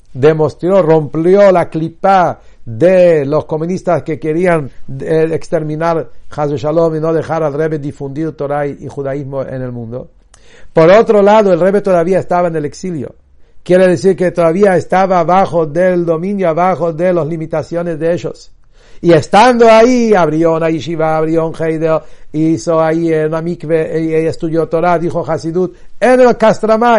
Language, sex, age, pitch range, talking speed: English, male, 60-79, 155-185 Hz, 150 wpm